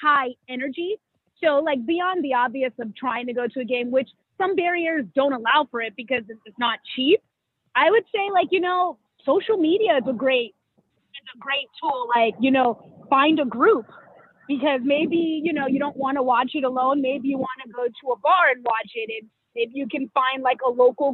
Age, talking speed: 30-49, 210 wpm